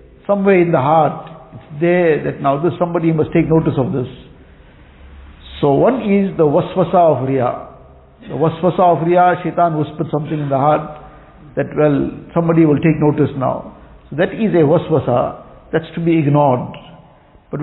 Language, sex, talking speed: English, male, 165 wpm